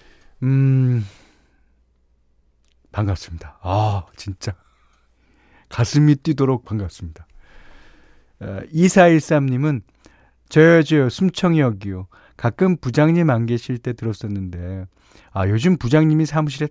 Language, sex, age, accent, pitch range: Korean, male, 40-59, native, 95-155 Hz